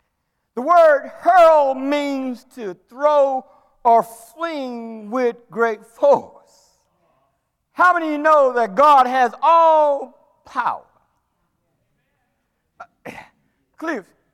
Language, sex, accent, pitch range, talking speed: English, male, American, 260-340 Hz, 95 wpm